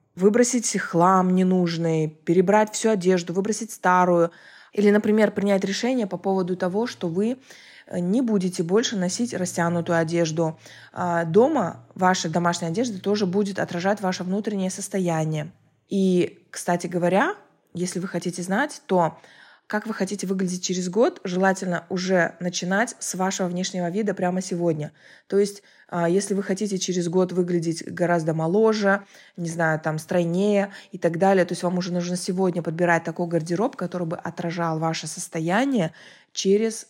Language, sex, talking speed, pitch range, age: Russian, female, 145 wpm, 170-200 Hz, 20-39